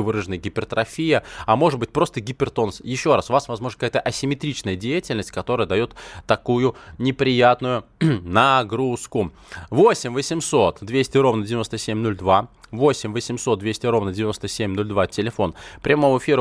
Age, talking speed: 20-39, 120 wpm